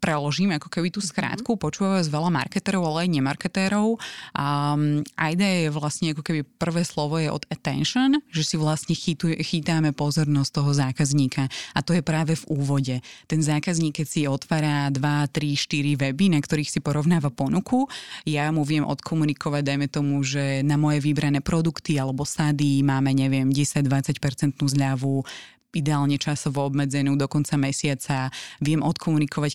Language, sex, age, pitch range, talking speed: Slovak, female, 20-39, 140-165 Hz, 155 wpm